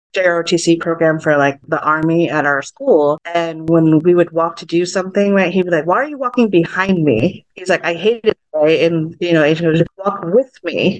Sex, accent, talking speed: female, American, 230 wpm